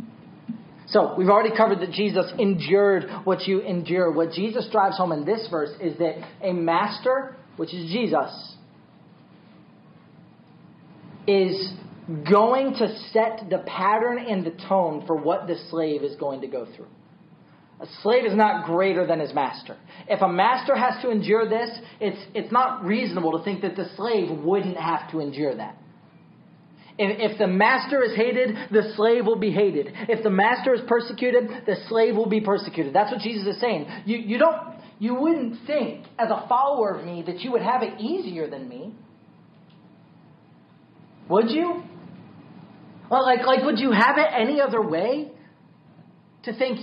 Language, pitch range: English, 185-240 Hz